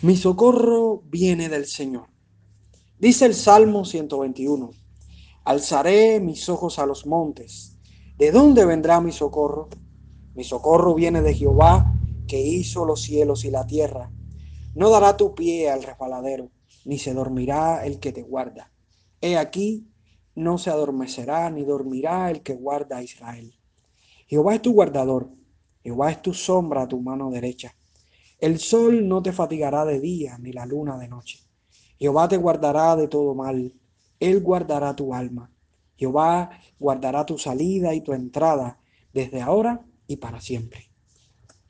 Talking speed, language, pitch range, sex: 150 wpm, Spanish, 120-170 Hz, male